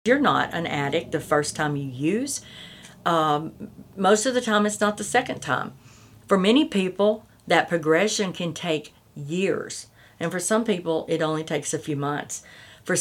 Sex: female